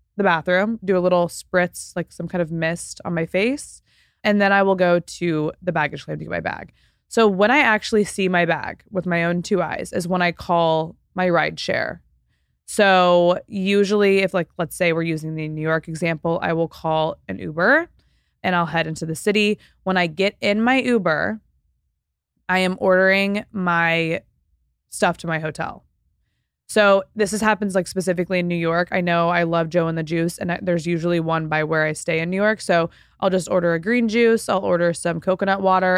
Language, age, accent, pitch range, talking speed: English, 20-39, American, 165-190 Hz, 205 wpm